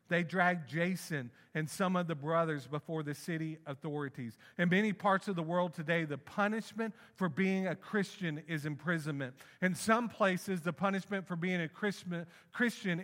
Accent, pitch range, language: American, 150-180 Hz, English